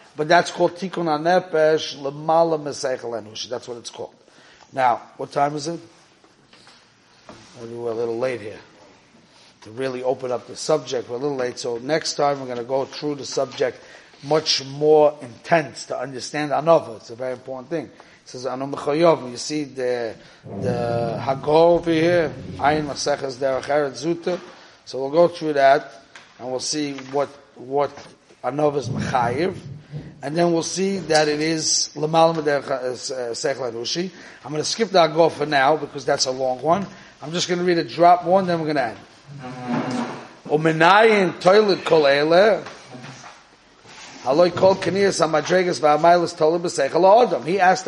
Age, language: 30-49, English